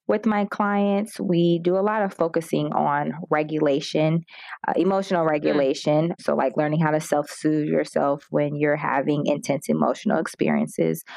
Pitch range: 145-170 Hz